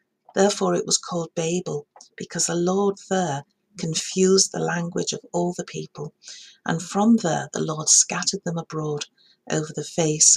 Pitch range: 155-195 Hz